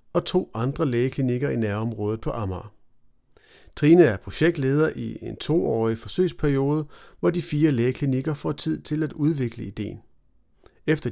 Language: Danish